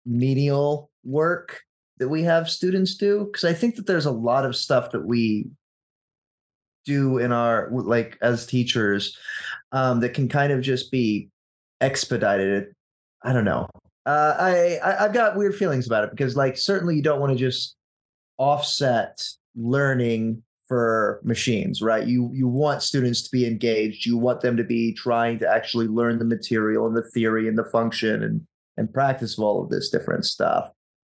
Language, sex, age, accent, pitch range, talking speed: English, male, 20-39, American, 115-140 Hz, 175 wpm